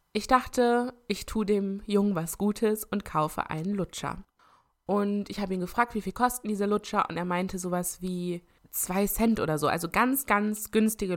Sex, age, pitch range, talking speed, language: female, 20-39, 175-210 Hz, 190 wpm, German